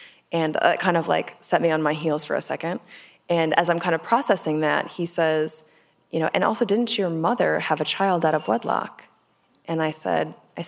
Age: 20-39